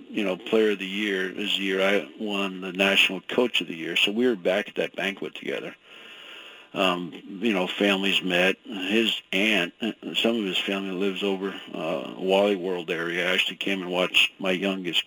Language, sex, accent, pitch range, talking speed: English, male, American, 95-105 Hz, 195 wpm